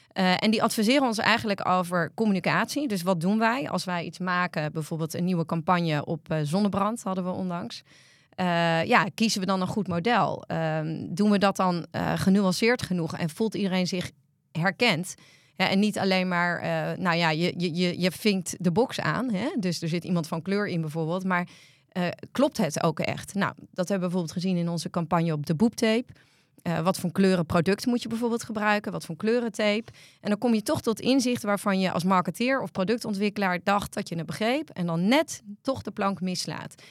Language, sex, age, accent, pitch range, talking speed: English, female, 30-49, Dutch, 170-215 Hz, 205 wpm